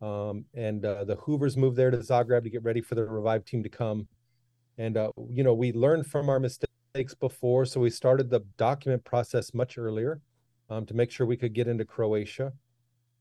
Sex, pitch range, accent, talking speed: male, 115-130 Hz, American, 205 wpm